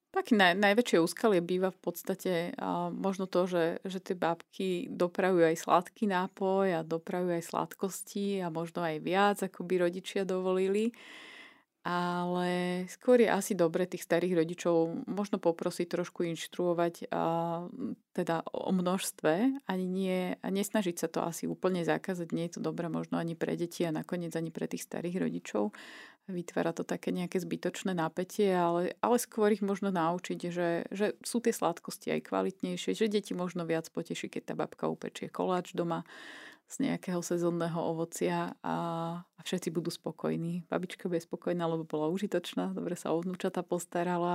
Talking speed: 155 wpm